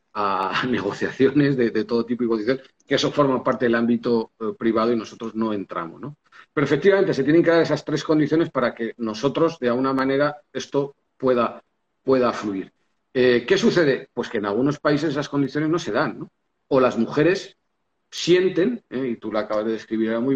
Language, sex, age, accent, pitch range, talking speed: Spanish, male, 40-59, Spanish, 120-165 Hz, 195 wpm